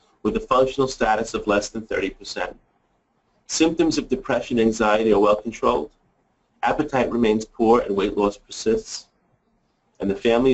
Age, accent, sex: 40-59, American, male